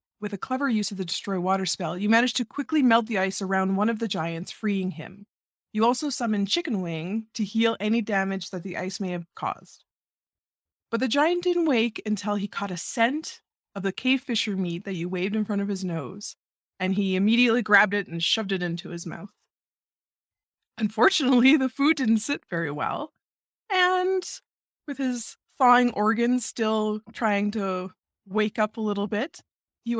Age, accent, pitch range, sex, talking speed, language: 20-39, American, 185-235 Hz, female, 185 wpm, English